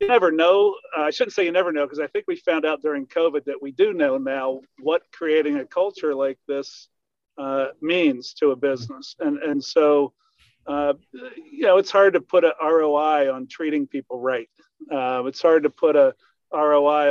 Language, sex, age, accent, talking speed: English, male, 50-69, American, 195 wpm